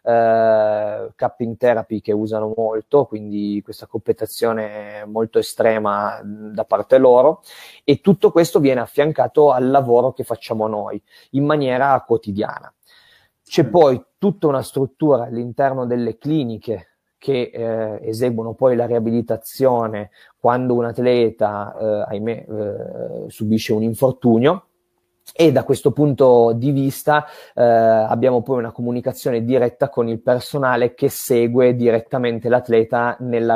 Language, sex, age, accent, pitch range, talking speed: Italian, male, 30-49, native, 110-130 Hz, 120 wpm